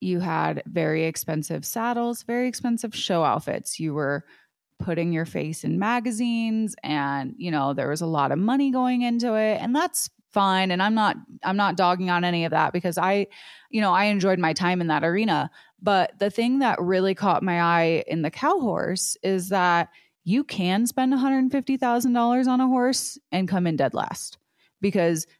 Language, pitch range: English, 170-215 Hz